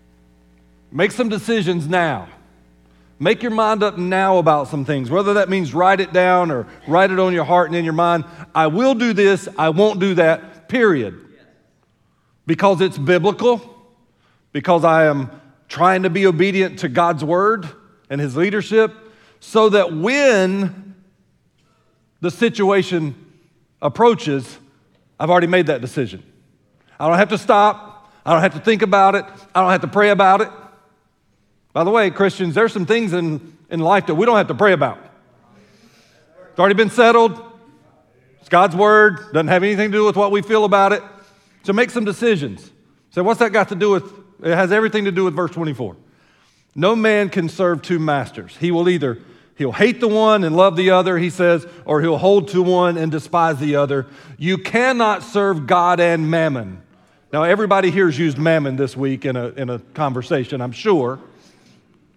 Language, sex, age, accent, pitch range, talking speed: English, male, 40-59, American, 155-205 Hz, 180 wpm